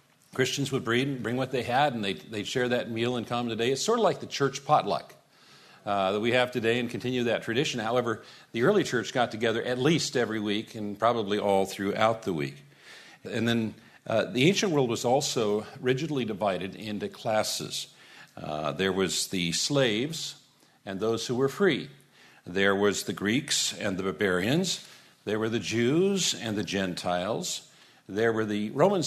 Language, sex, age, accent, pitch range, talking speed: English, male, 50-69, American, 100-130 Hz, 180 wpm